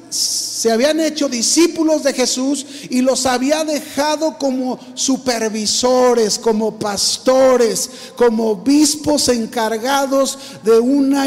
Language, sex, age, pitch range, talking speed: Spanish, male, 50-69, 235-285 Hz, 100 wpm